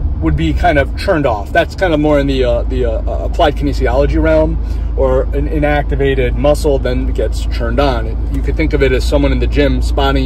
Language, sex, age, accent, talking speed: English, male, 30-49, American, 215 wpm